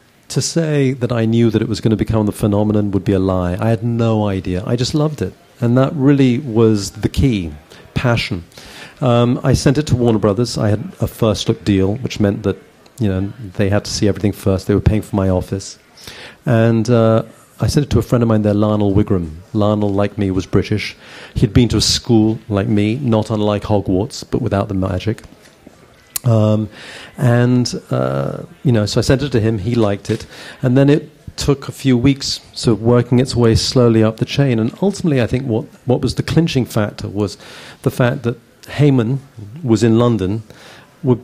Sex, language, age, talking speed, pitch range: male, English, 40-59, 210 wpm, 105-135 Hz